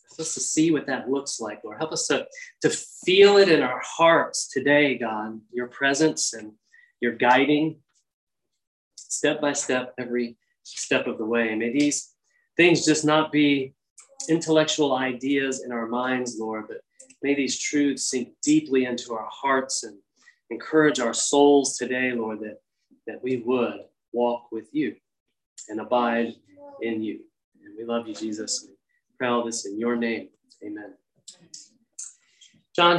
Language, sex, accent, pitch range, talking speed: English, male, American, 120-155 Hz, 155 wpm